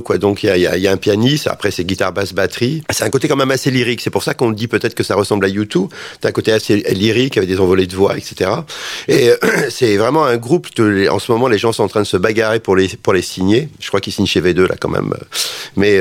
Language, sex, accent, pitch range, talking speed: French, male, French, 95-125 Hz, 285 wpm